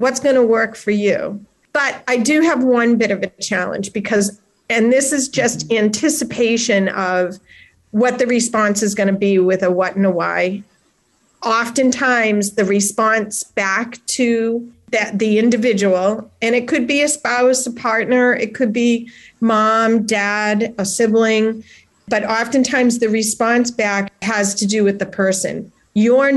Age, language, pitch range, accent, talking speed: 40-59, English, 210-255 Hz, American, 160 wpm